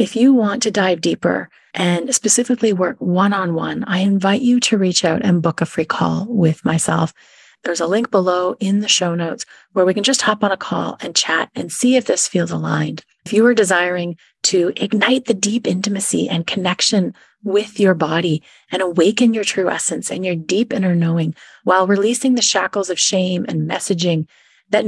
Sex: female